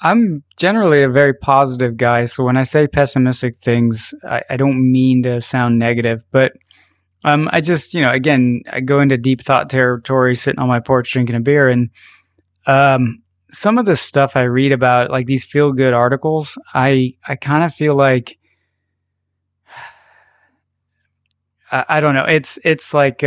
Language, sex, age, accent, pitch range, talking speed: English, male, 20-39, American, 125-145 Hz, 170 wpm